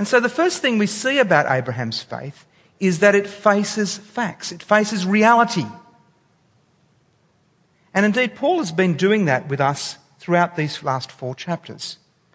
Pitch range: 140-200 Hz